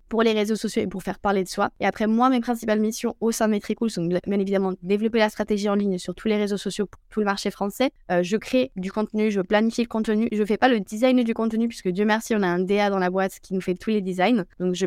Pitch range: 180-205 Hz